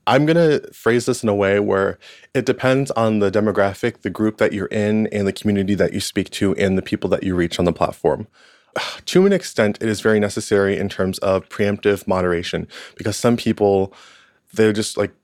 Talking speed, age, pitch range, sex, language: 210 wpm, 20-39, 95-110 Hz, male, English